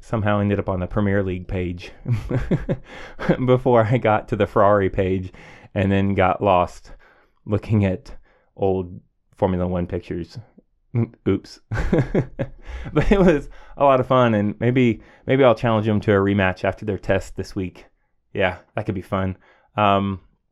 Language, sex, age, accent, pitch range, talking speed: English, male, 20-39, American, 100-120 Hz, 155 wpm